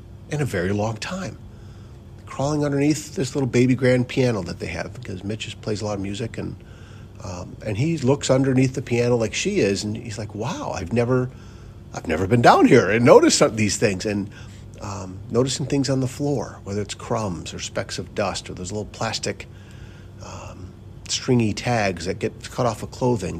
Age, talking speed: 40-59, 195 wpm